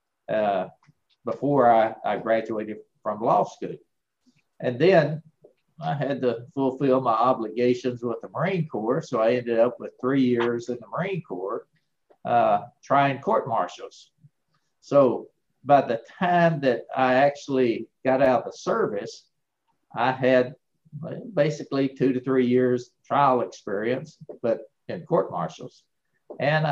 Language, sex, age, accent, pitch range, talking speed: English, male, 50-69, American, 120-145 Hz, 130 wpm